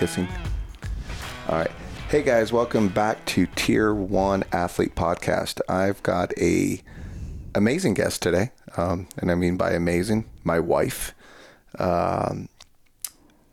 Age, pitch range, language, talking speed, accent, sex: 30-49, 85-95 Hz, English, 120 wpm, American, male